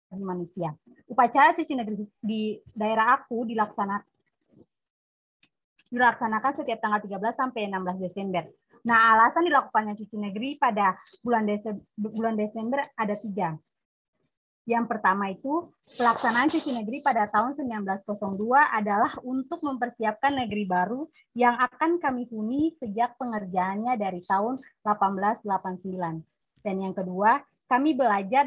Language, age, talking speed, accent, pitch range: Indonesian, 20-39, 110 wpm, native, 195-250 Hz